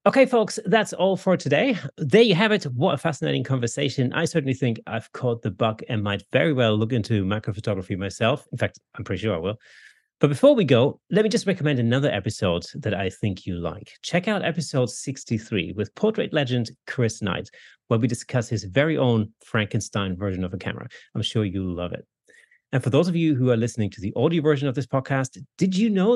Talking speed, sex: 215 wpm, male